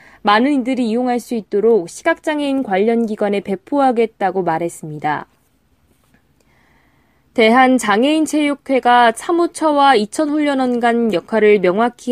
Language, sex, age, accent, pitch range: Korean, female, 20-39, native, 220-280 Hz